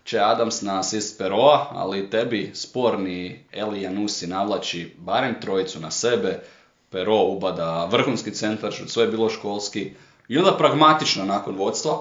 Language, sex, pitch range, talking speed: Croatian, male, 95-115 Hz, 140 wpm